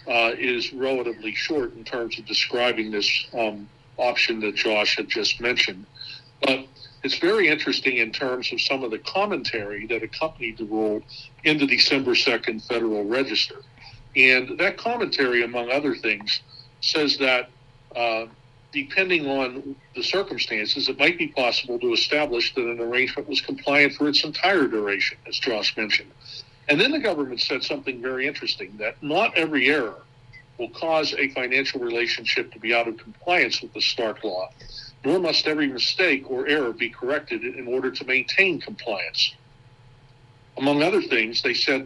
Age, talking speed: 60-79, 160 wpm